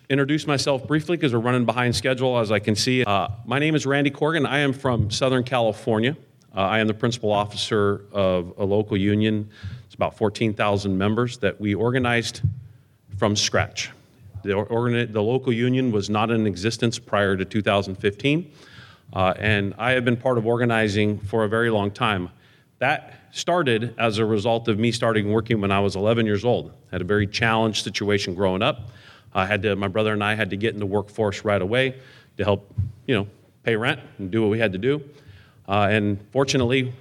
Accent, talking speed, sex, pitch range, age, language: American, 195 wpm, male, 105-125 Hz, 40-59, English